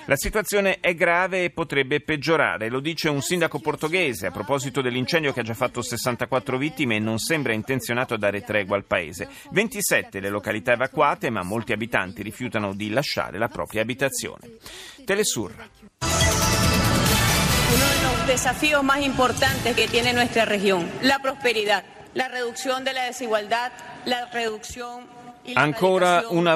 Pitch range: 110-165 Hz